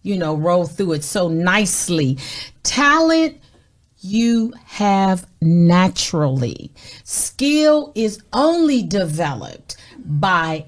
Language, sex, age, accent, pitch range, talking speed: English, female, 40-59, American, 180-240 Hz, 90 wpm